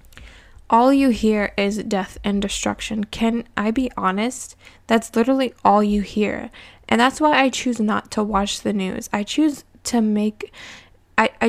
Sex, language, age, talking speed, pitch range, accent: female, English, 20-39, 155 wpm, 200-230 Hz, American